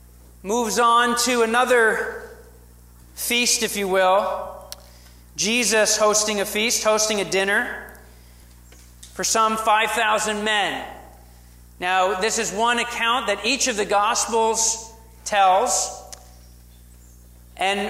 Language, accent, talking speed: English, American, 105 wpm